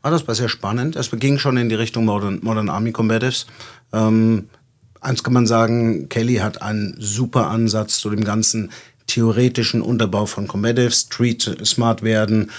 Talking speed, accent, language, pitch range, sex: 155 wpm, German, German, 105-120 Hz, male